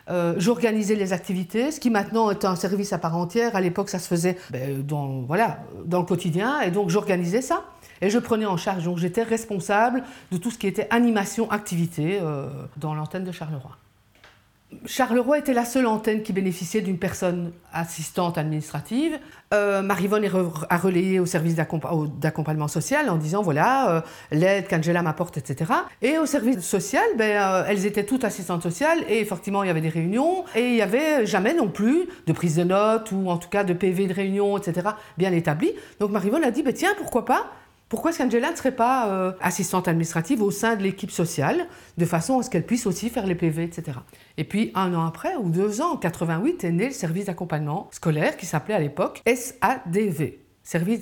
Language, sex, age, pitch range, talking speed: French, female, 50-69, 165-220 Hz, 205 wpm